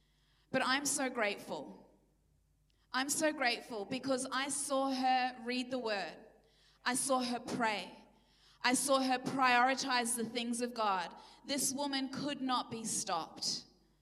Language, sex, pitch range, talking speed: English, female, 250-285 Hz, 135 wpm